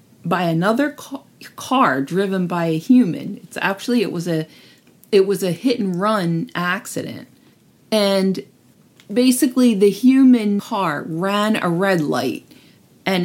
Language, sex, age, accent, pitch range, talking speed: English, female, 40-59, American, 175-220 Hz, 130 wpm